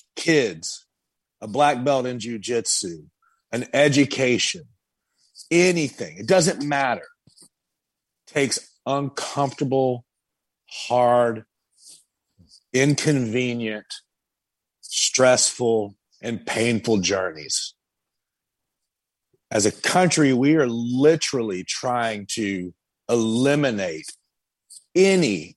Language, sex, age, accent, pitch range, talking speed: English, male, 40-59, American, 110-145 Hz, 70 wpm